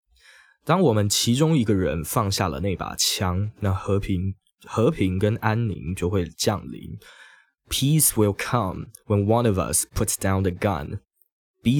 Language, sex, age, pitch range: Chinese, male, 20-39, 95-120 Hz